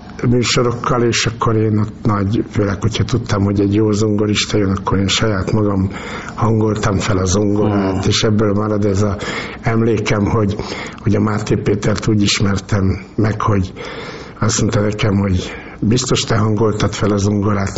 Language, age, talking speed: Hungarian, 60-79, 160 wpm